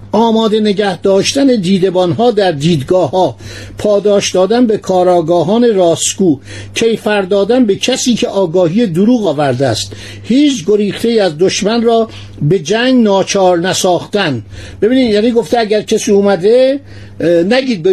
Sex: male